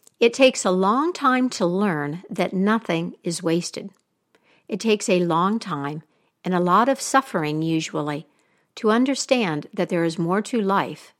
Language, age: English, 60-79